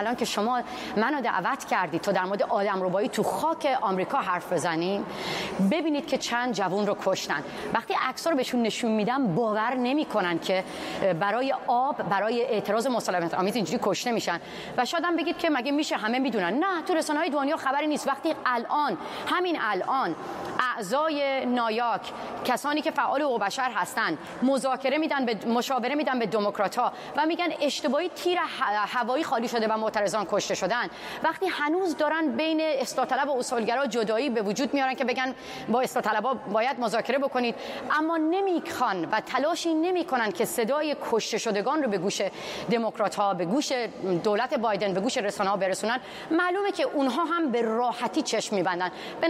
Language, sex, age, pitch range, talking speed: Persian, female, 30-49, 215-300 Hz, 160 wpm